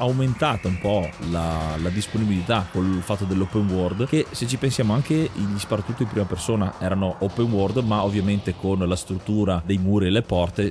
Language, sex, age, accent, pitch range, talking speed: Italian, male, 30-49, native, 95-115 Hz, 185 wpm